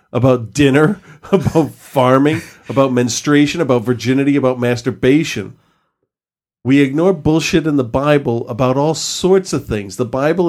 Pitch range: 115-145 Hz